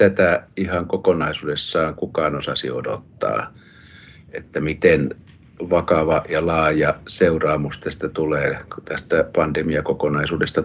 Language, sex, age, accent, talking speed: Finnish, male, 60-79, native, 90 wpm